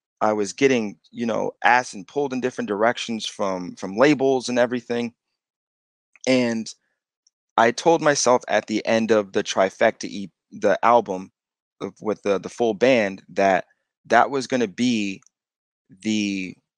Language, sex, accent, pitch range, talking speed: English, male, American, 100-125 Hz, 145 wpm